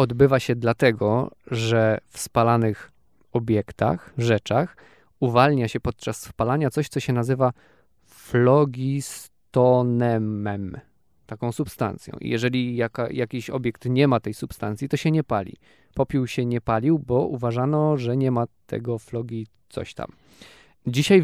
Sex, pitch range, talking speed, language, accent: male, 120-145 Hz, 130 wpm, Polish, native